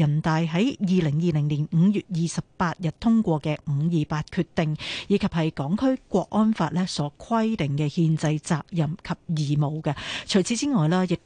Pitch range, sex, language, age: 155-195 Hz, female, Chinese, 40-59